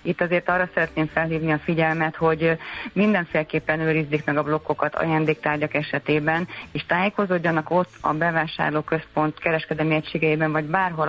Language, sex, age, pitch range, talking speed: Hungarian, female, 30-49, 150-170 Hz, 130 wpm